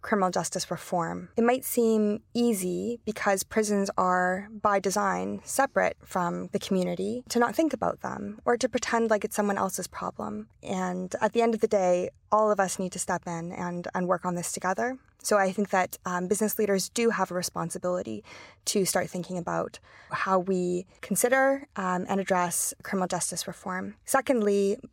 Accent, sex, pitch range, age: American, female, 180-215 Hz, 20-39